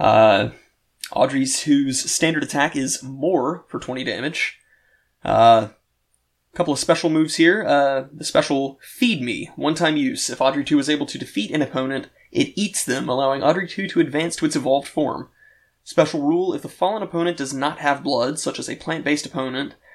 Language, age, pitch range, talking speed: English, 20-39, 135-190 Hz, 175 wpm